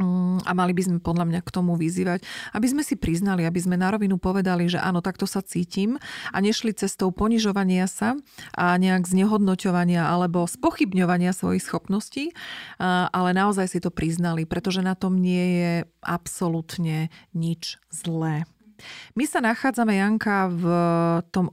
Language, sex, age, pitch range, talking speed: Slovak, female, 40-59, 180-220 Hz, 150 wpm